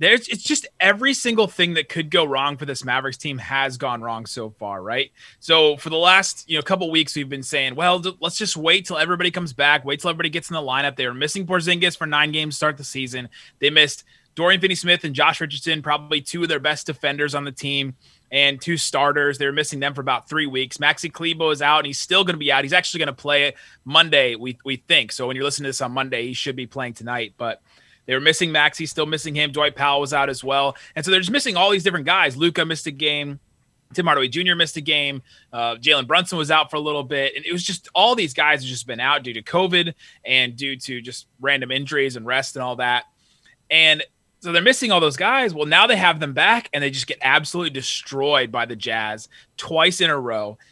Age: 20-39